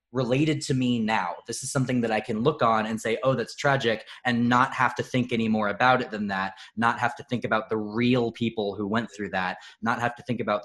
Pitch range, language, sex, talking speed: 100-120 Hz, English, male, 255 wpm